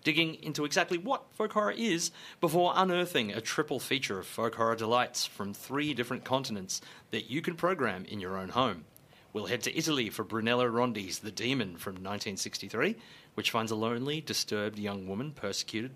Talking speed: 175 wpm